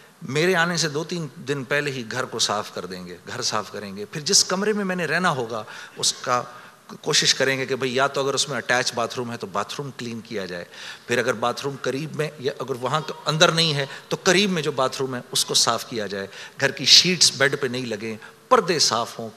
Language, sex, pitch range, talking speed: Urdu, male, 145-230 Hz, 260 wpm